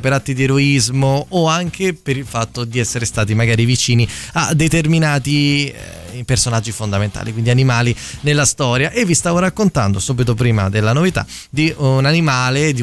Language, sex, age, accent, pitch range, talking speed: Italian, male, 20-39, native, 120-160 Hz, 160 wpm